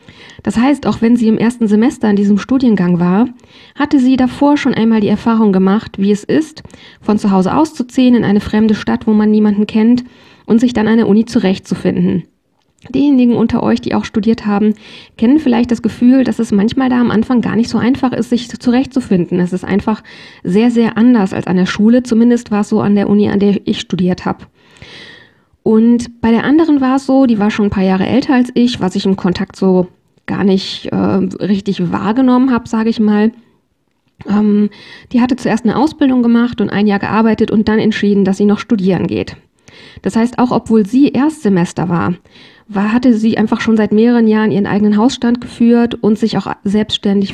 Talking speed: 205 wpm